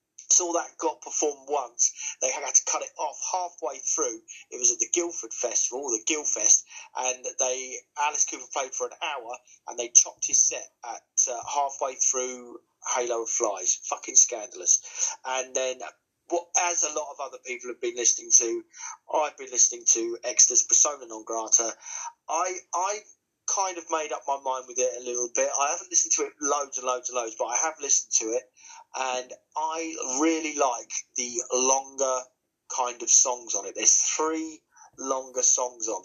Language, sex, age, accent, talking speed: English, male, 30-49, British, 185 wpm